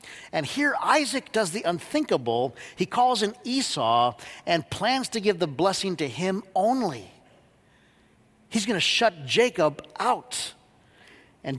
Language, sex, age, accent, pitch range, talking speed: English, male, 50-69, American, 165-235 Hz, 135 wpm